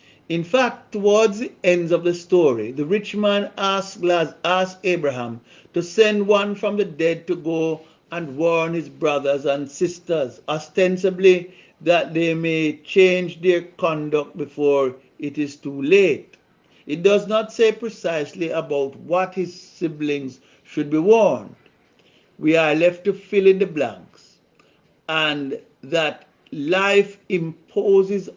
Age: 60-79